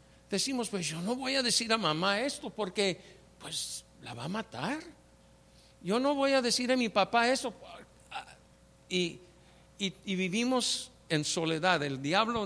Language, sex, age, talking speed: English, male, 60-79, 155 wpm